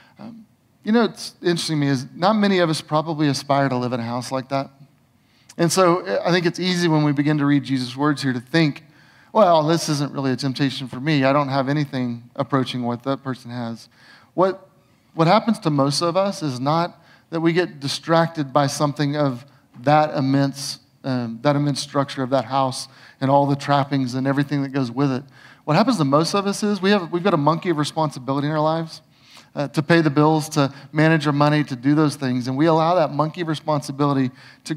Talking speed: 215 wpm